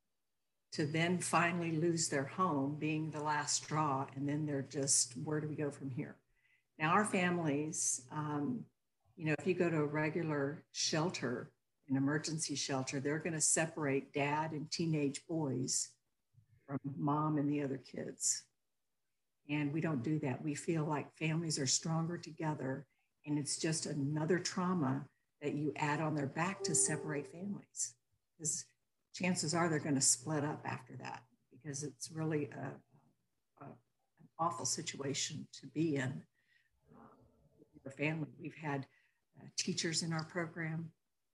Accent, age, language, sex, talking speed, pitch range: American, 60-79, English, female, 150 wpm, 135-160 Hz